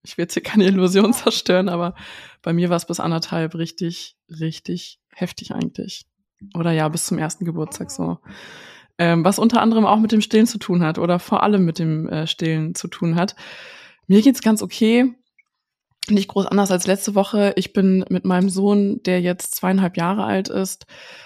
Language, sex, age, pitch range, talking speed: German, female, 20-39, 175-200 Hz, 190 wpm